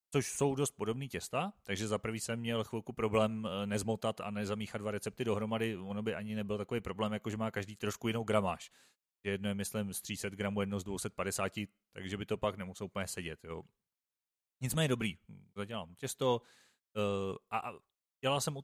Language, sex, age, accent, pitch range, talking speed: Czech, male, 30-49, native, 100-125 Hz, 175 wpm